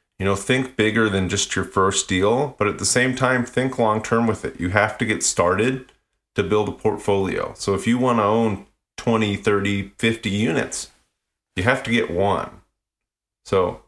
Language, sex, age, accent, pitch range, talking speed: English, male, 30-49, American, 95-110 Hz, 190 wpm